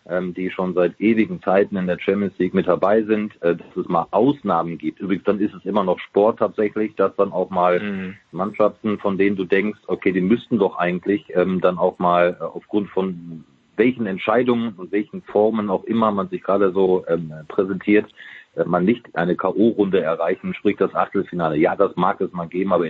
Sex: male